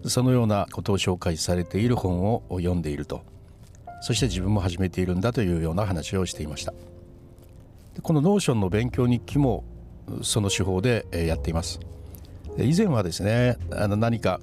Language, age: Japanese, 60-79